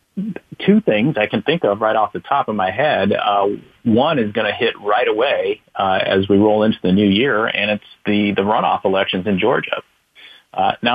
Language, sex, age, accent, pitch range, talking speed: English, male, 40-59, American, 95-110 Hz, 215 wpm